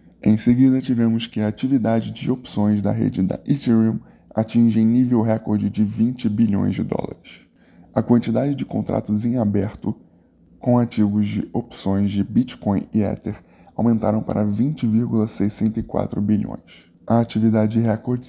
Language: Portuguese